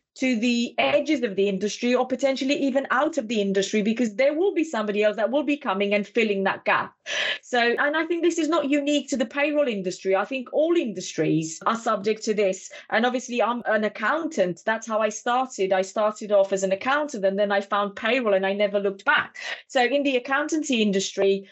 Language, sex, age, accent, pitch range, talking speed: English, female, 30-49, British, 215-280 Hz, 215 wpm